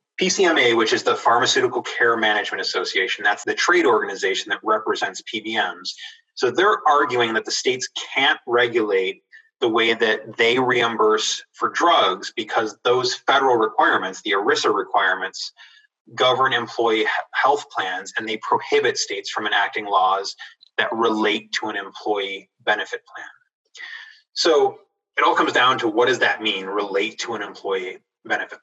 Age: 20-39